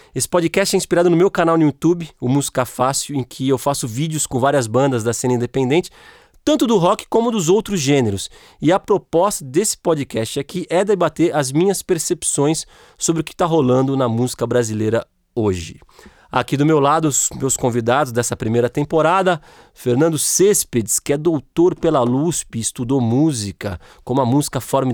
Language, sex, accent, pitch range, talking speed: Portuguese, male, Brazilian, 120-165 Hz, 180 wpm